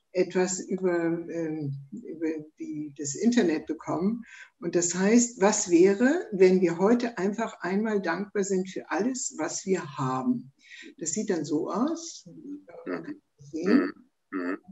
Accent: German